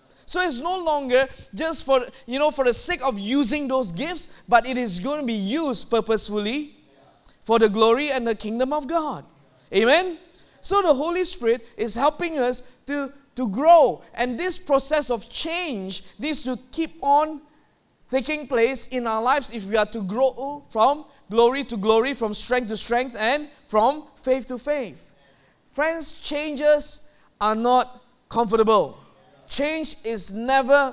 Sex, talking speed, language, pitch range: male, 160 wpm, English, 225-290 Hz